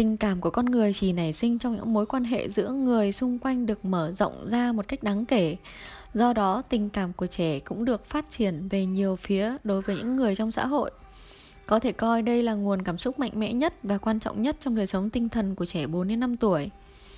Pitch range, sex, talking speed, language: 190-235 Hz, female, 240 wpm, Vietnamese